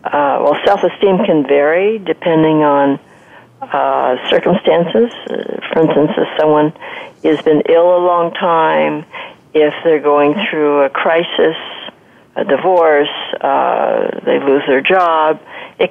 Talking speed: 125 wpm